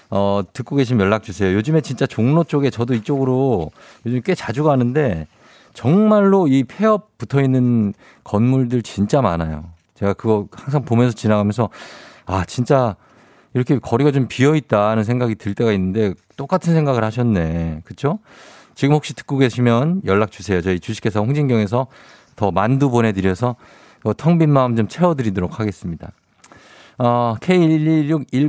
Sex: male